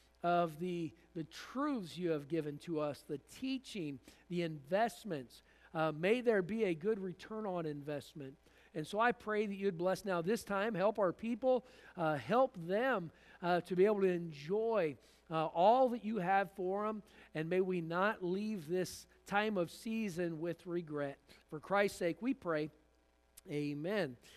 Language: English